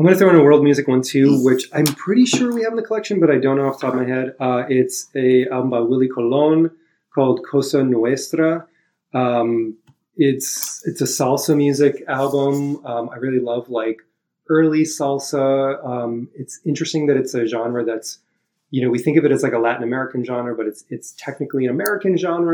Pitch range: 120-145 Hz